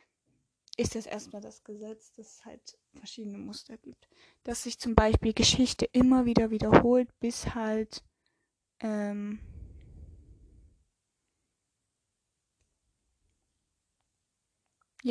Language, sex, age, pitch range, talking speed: German, female, 20-39, 200-230 Hz, 85 wpm